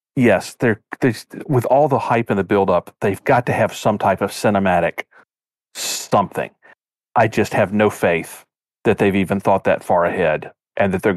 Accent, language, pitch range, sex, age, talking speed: American, English, 105-130 Hz, male, 40-59, 185 wpm